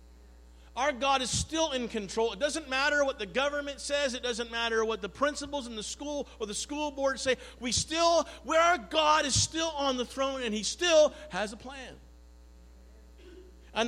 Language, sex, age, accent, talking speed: English, male, 40-59, American, 185 wpm